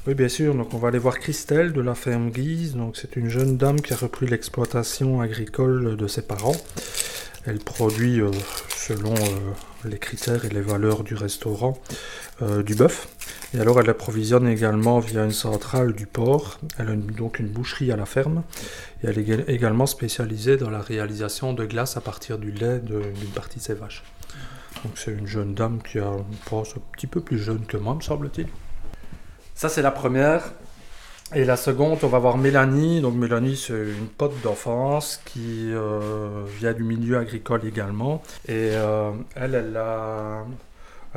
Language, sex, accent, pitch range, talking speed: French, male, French, 110-130 Hz, 180 wpm